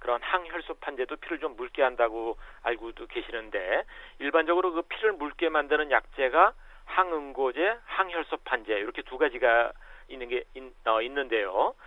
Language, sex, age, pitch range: Korean, male, 40-59, 135-190 Hz